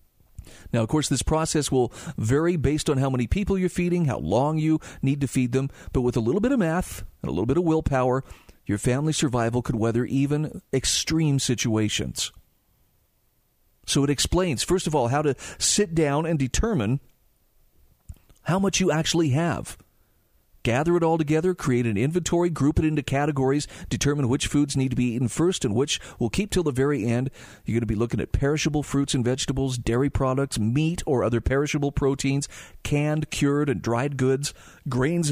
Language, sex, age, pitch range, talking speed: English, male, 40-59, 120-155 Hz, 185 wpm